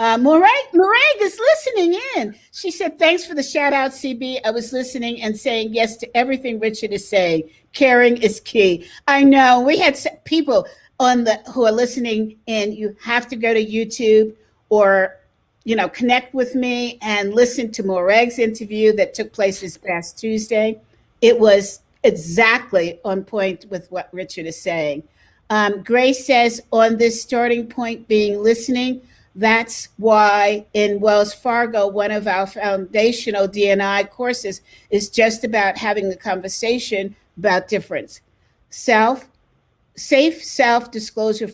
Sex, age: female, 50-69